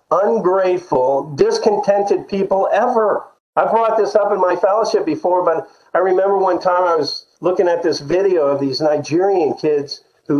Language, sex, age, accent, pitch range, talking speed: English, male, 50-69, American, 135-220 Hz, 160 wpm